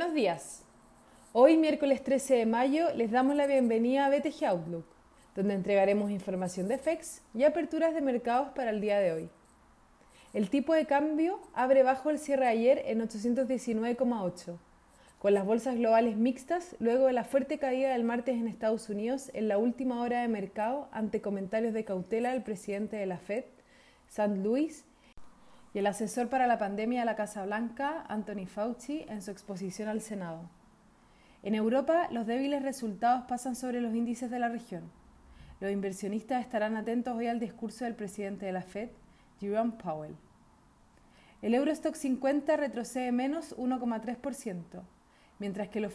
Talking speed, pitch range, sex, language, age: 160 wpm, 210-260 Hz, female, Spanish, 30-49